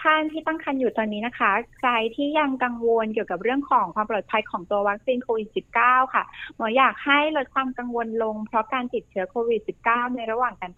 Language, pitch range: Thai, 210-255 Hz